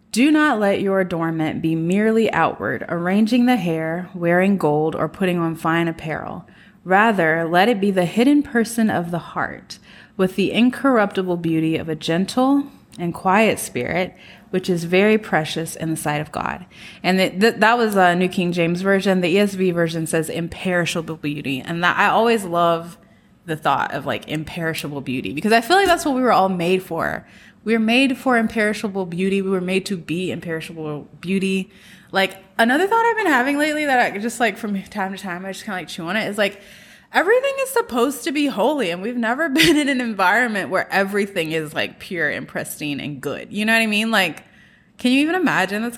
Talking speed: 200 wpm